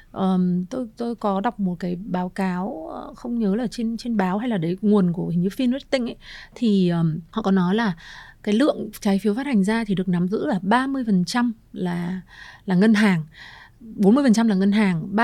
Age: 30-49